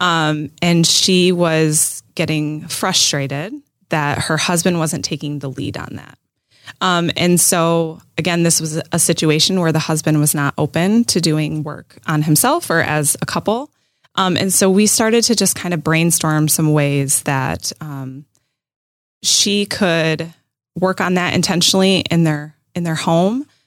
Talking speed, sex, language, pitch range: 160 wpm, female, English, 150-185 Hz